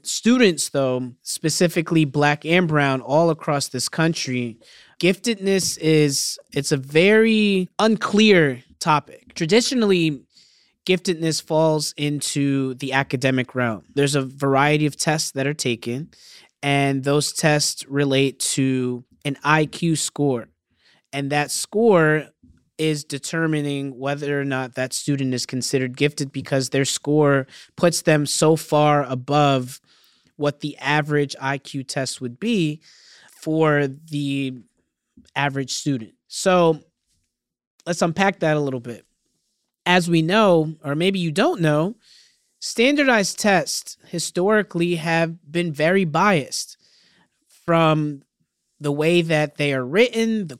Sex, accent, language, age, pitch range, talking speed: male, American, English, 20-39, 140-175 Hz, 120 wpm